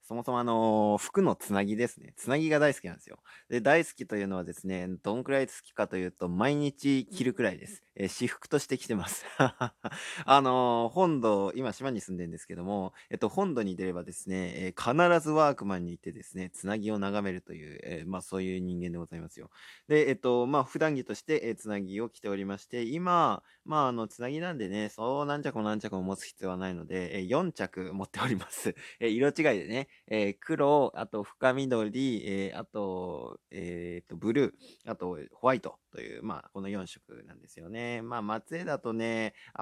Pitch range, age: 95-135 Hz, 20-39